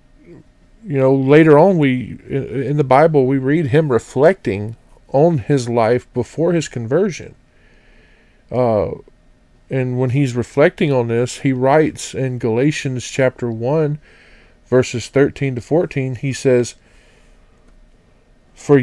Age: 40-59